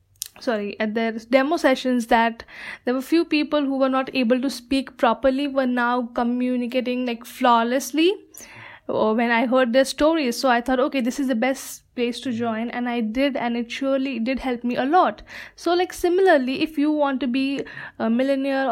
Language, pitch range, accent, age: English, 245-290 Hz, Indian, 10-29